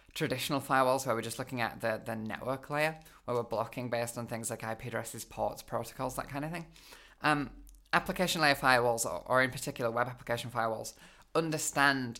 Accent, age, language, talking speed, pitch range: British, 20-39, English, 185 wpm, 115-150 Hz